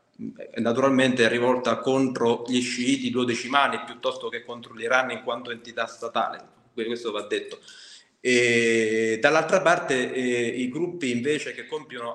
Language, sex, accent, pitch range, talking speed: Italian, male, native, 120-145 Hz, 135 wpm